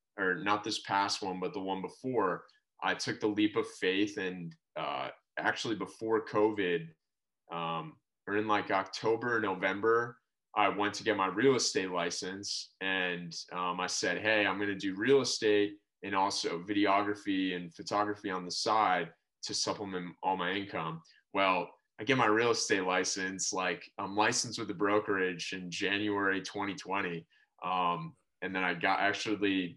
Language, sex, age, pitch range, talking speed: English, male, 20-39, 90-110 Hz, 160 wpm